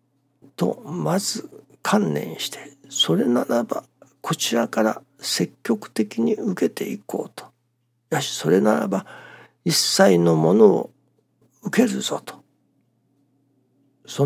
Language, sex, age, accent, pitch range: Japanese, male, 60-79, native, 125-165 Hz